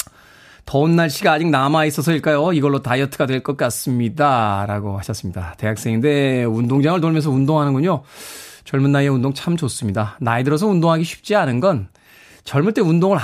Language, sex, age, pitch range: Korean, male, 20-39, 125-165 Hz